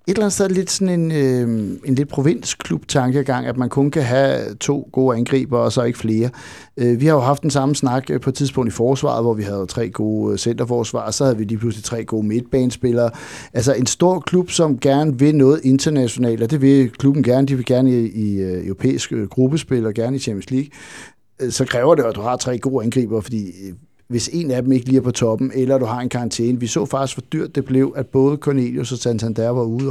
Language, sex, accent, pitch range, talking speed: Danish, male, native, 115-140 Hz, 230 wpm